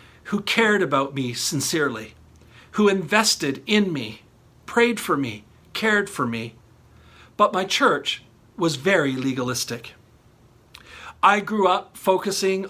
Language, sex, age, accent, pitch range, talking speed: English, male, 50-69, American, 120-185 Hz, 120 wpm